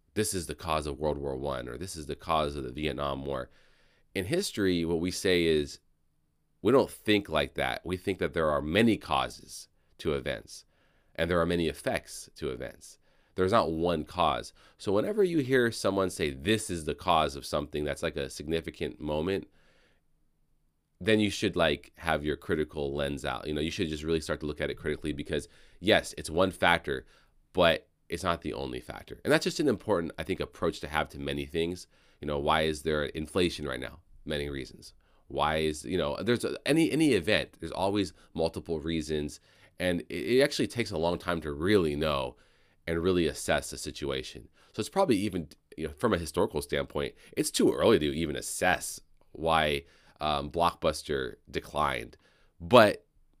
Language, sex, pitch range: English, male, 75-90 Hz